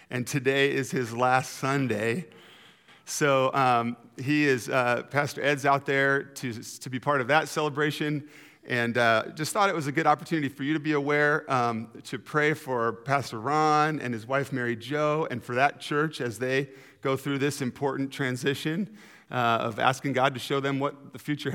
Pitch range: 130-155 Hz